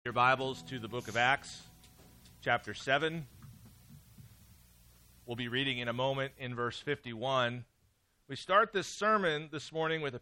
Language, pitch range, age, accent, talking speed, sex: English, 115-155 Hz, 40-59, American, 155 wpm, male